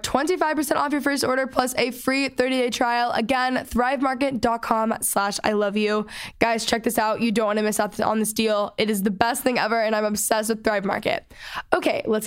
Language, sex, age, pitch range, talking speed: English, female, 10-29, 220-265 Hz, 210 wpm